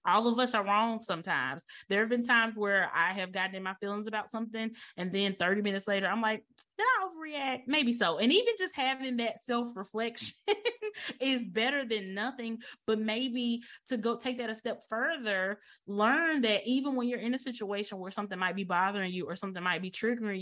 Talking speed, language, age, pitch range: 205 wpm, English, 20-39, 185-240 Hz